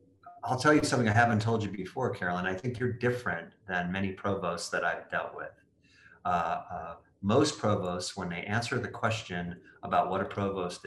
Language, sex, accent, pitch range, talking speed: English, male, American, 95-110 Hz, 190 wpm